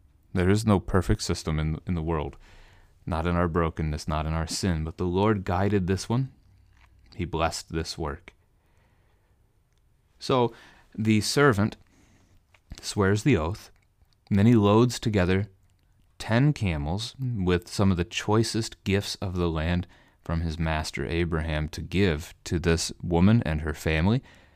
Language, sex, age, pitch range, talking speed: English, male, 30-49, 80-100 Hz, 150 wpm